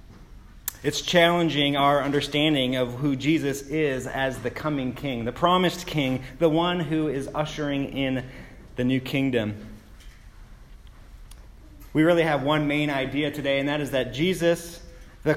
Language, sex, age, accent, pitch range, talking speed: English, male, 30-49, American, 140-170 Hz, 145 wpm